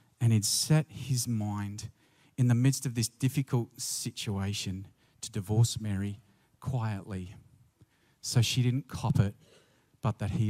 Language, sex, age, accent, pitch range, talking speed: English, male, 40-59, Australian, 115-150 Hz, 135 wpm